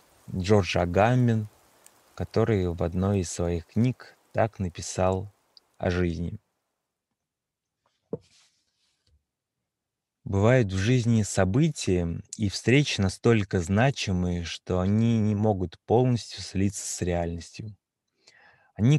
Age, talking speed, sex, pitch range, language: 20-39, 90 wpm, male, 90-110 Hz, Russian